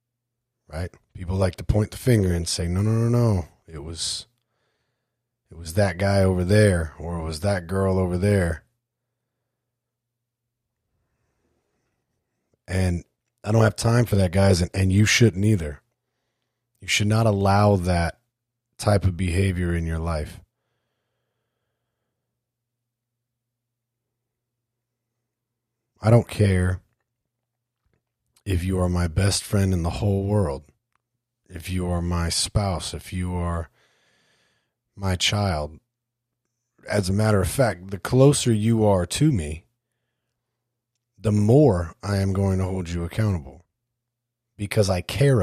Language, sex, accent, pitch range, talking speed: English, male, American, 95-120 Hz, 130 wpm